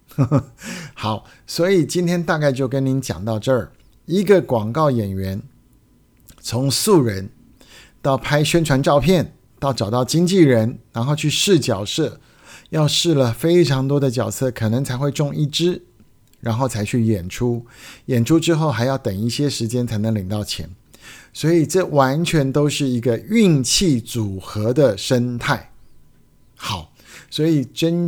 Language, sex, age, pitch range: Chinese, male, 50-69, 120-155 Hz